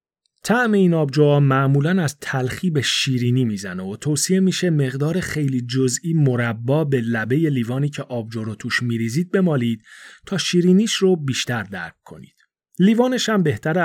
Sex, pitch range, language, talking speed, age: male, 120-180 Hz, Persian, 145 wpm, 30-49